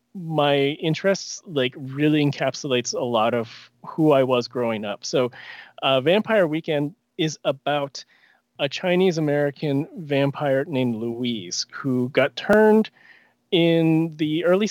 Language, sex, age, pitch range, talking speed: English, male, 30-49, 135-180 Hz, 130 wpm